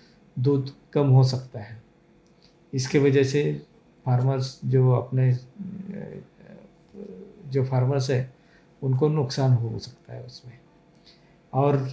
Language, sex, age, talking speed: Hindi, male, 50-69, 105 wpm